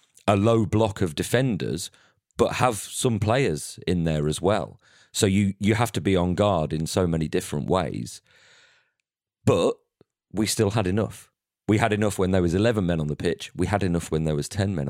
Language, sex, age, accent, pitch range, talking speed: English, male, 40-59, British, 80-105 Hz, 200 wpm